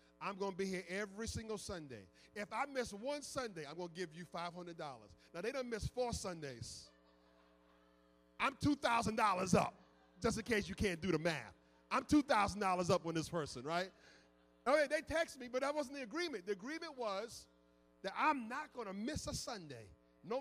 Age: 40-59